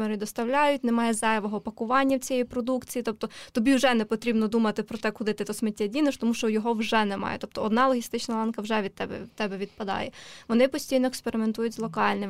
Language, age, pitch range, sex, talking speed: Ukrainian, 20-39, 220-250 Hz, female, 200 wpm